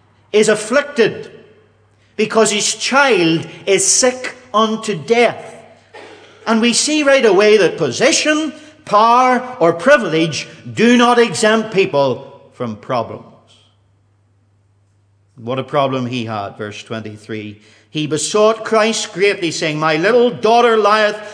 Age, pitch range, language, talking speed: 50-69, 150-230 Hz, English, 115 wpm